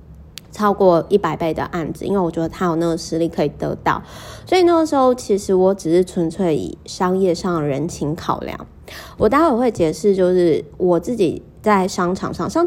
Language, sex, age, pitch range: Chinese, female, 20-39, 165-205 Hz